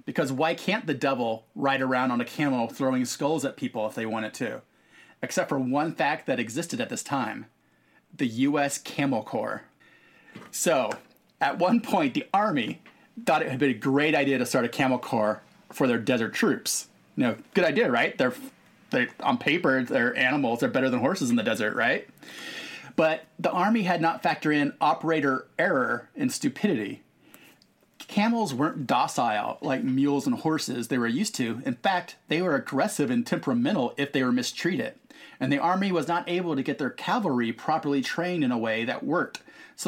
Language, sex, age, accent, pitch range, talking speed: English, male, 30-49, American, 130-200 Hz, 185 wpm